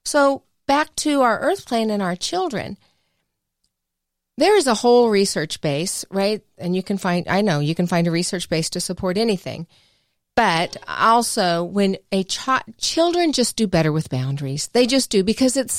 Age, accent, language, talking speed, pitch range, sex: 40-59, American, English, 180 wpm, 165-225 Hz, female